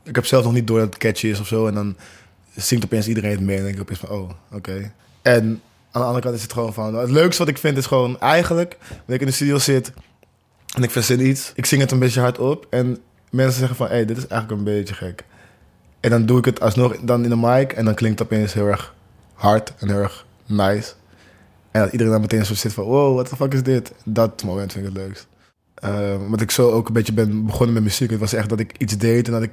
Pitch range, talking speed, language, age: 100-125 Hz, 280 wpm, Dutch, 20-39